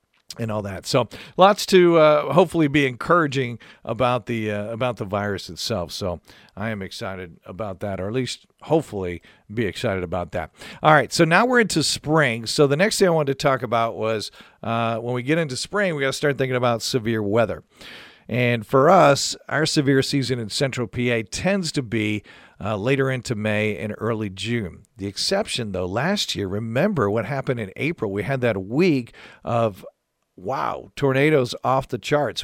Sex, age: male, 50-69